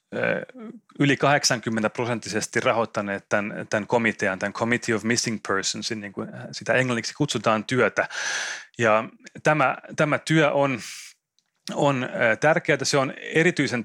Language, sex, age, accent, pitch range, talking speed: Finnish, male, 30-49, native, 110-135 Hz, 115 wpm